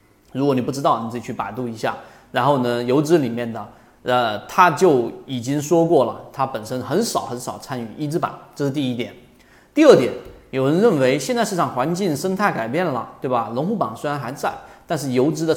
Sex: male